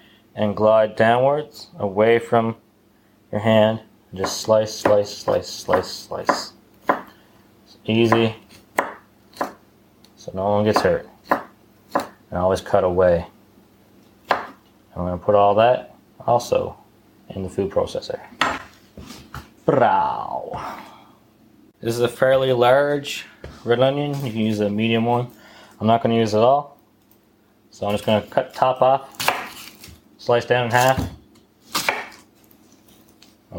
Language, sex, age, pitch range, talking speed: English, male, 20-39, 105-125 Hz, 125 wpm